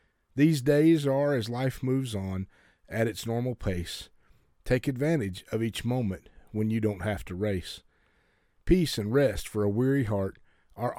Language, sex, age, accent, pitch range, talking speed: English, male, 40-59, American, 100-130 Hz, 165 wpm